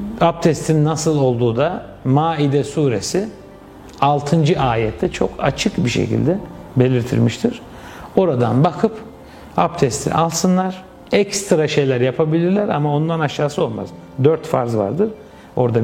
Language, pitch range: Turkish, 125-160 Hz